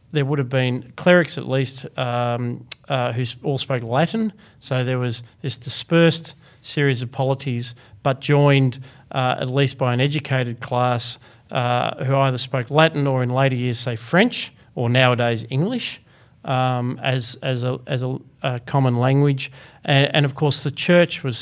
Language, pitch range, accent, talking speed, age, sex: English, 120-145 Hz, Australian, 170 wpm, 40-59, male